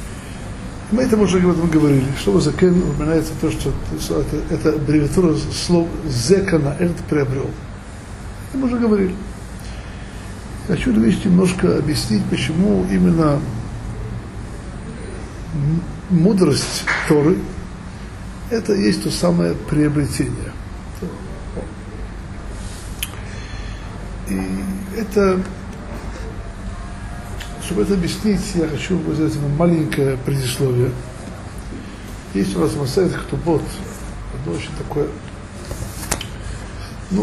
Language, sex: Russian, male